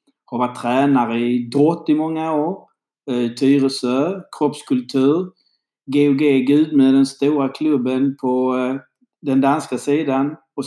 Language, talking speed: Swedish, 110 wpm